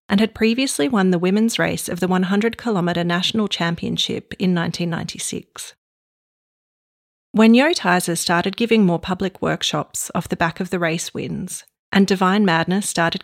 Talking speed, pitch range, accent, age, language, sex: 150 wpm, 175-215 Hz, Australian, 30-49, English, female